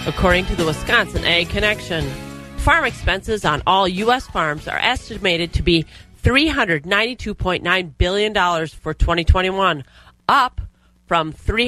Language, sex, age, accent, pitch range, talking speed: English, female, 30-49, American, 155-205 Hz, 115 wpm